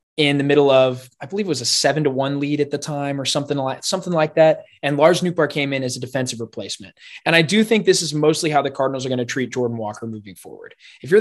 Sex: male